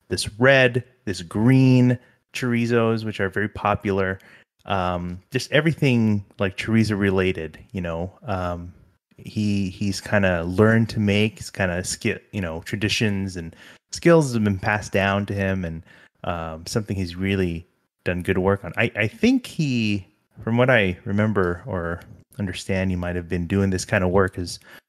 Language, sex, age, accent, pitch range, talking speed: English, male, 30-49, American, 95-115 Hz, 165 wpm